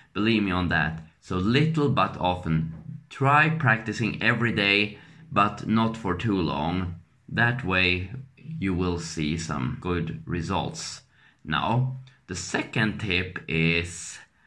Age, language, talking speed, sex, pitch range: 20-39, English, 125 wpm, male, 90-115 Hz